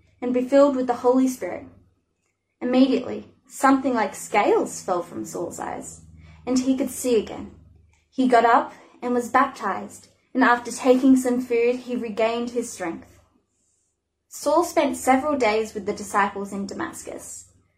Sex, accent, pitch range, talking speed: female, Australian, 210-265 Hz, 150 wpm